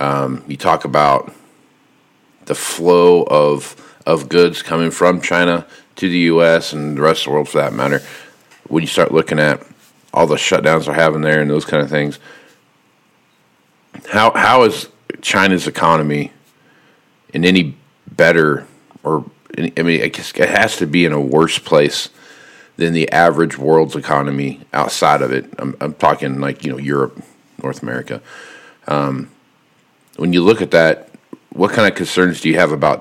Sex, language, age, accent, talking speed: male, English, 40-59, American, 165 wpm